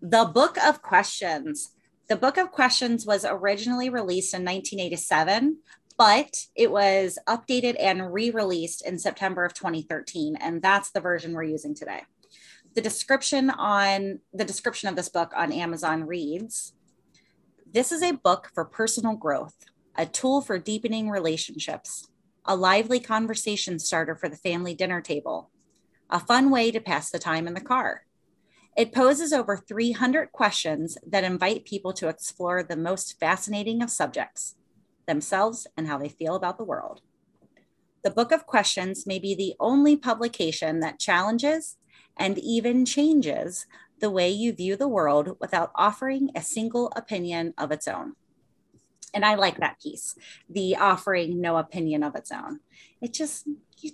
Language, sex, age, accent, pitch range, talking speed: English, female, 30-49, American, 175-250 Hz, 155 wpm